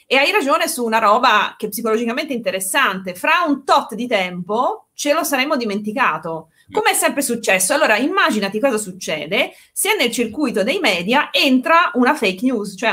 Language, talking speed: Italian, 170 wpm